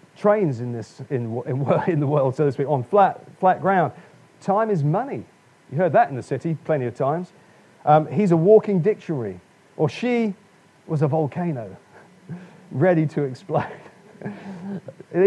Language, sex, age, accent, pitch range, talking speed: English, male, 40-59, British, 145-200 Hz, 155 wpm